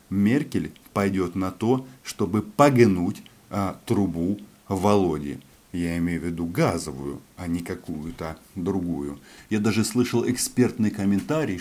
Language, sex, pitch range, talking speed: Russian, male, 95-125 Hz, 115 wpm